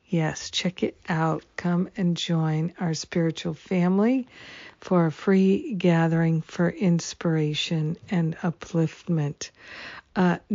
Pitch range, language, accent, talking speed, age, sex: 160-180 Hz, English, American, 110 wpm, 50-69, female